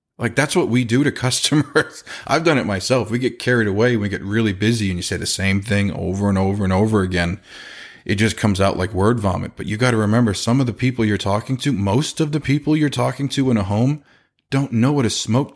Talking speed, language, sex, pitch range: 255 wpm, English, male, 105-125 Hz